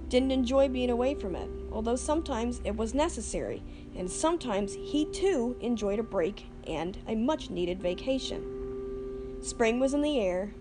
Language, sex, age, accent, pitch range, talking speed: English, female, 40-59, American, 175-260 Hz, 160 wpm